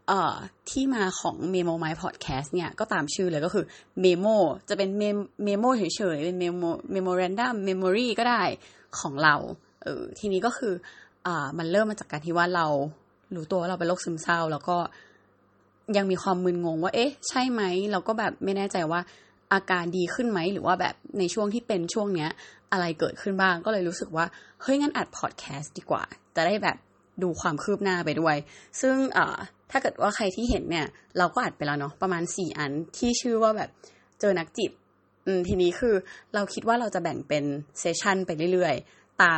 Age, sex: 20-39, female